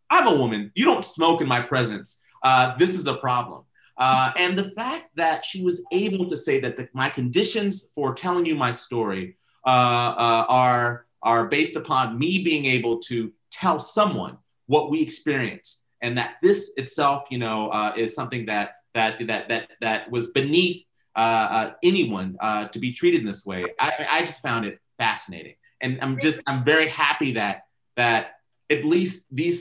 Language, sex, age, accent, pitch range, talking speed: English, male, 30-49, American, 115-150 Hz, 185 wpm